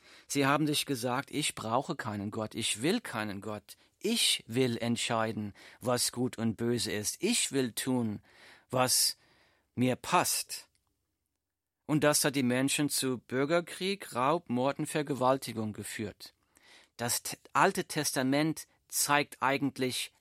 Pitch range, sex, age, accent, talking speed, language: 110-150 Hz, male, 40-59, German, 125 wpm, German